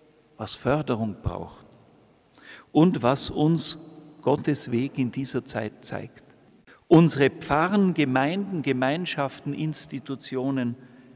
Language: German